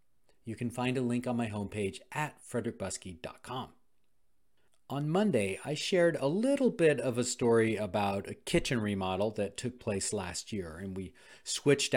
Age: 40-59